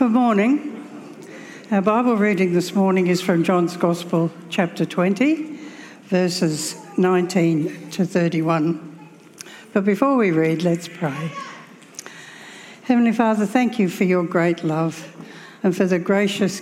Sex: female